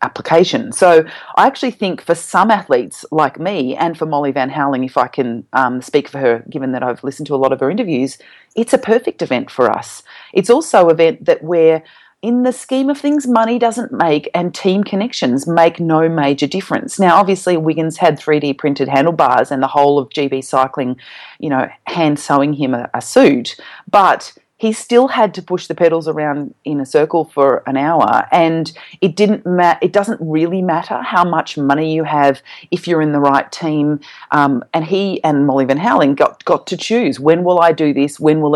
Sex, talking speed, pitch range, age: female, 205 wpm, 140-185 Hz, 30-49